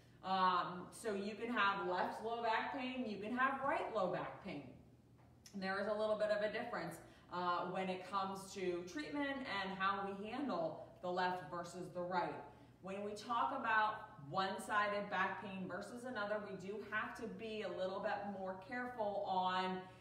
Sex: female